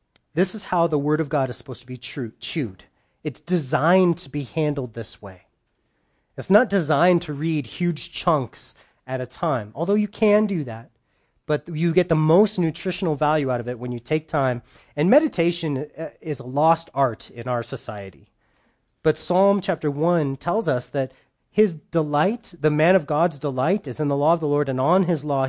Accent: American